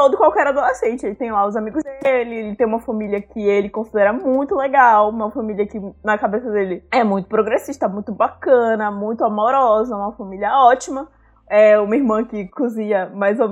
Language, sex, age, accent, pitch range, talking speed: Portuguese, female, 20-39, Brazilian, 215-275 Hz, 180 wpm